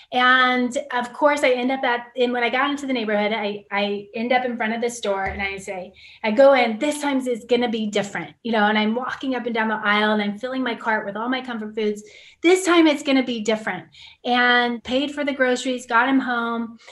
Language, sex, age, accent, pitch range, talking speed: English, female, 30-49, American, 215-255 Hz, 250 wpm